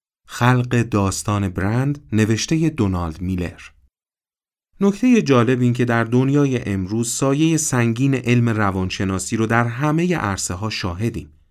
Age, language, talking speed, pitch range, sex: 40-59, Persian, 115 wpm, 95-135 Hz, male